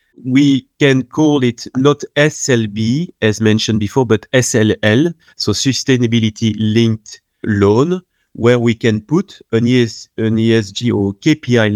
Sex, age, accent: male, 30-49, French